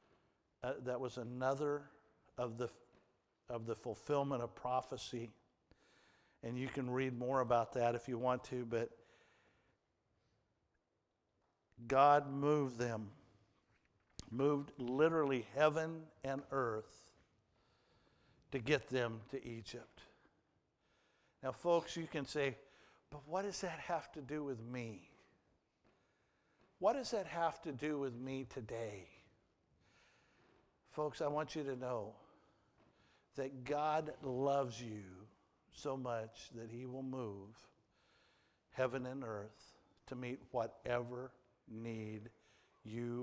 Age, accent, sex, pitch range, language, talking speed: 60-79, American, male, 115-140 Hz, English, 115 wpm